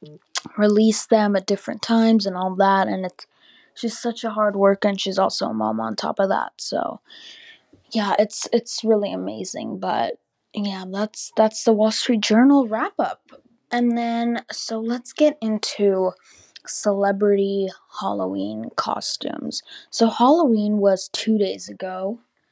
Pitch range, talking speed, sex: 195-225 Hz, 145 wpm, female